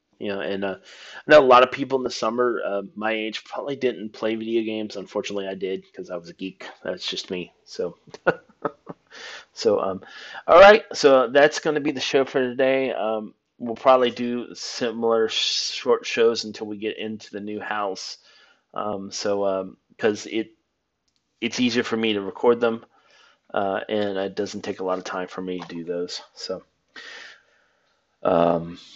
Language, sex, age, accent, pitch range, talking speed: English, male, 30-49, American, 100-125 Hz, 180 wpm